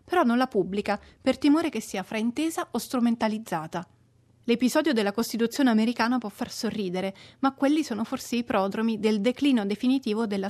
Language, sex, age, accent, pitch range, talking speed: Italian, female, 30-49, native, 200-250 Hz, 160 wpm